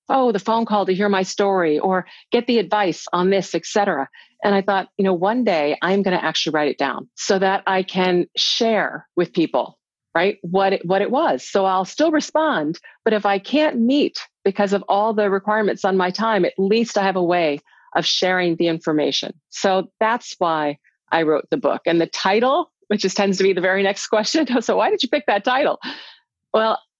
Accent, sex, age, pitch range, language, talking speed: American, female, 40-59, 175-220 Hz, English, 210 wpm